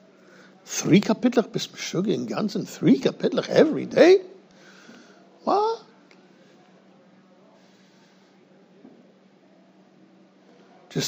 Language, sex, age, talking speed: English, male, 60-79, 60 wpm